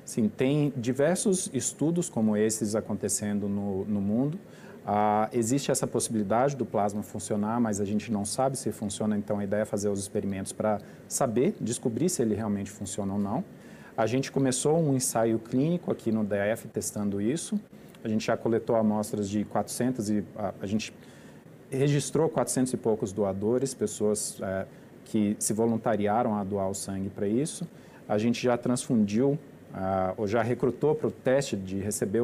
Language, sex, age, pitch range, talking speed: Portuguese, male, 40-59, 105-135 Hz, 170 wpm